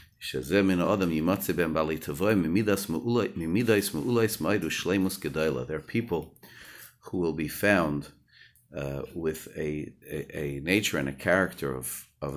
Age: 50-69